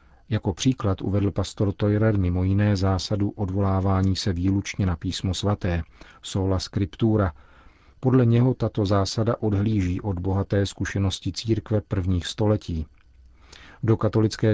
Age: 40-59